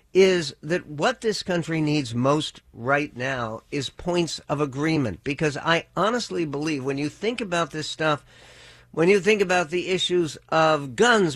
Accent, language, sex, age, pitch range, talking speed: American, English, male, 60-79, 140-185 Hz, 165 wpm